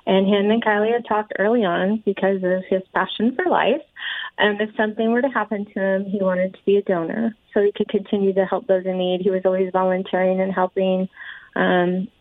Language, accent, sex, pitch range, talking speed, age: English, American, female, 190-215 Hz, 215 wpm, 30-49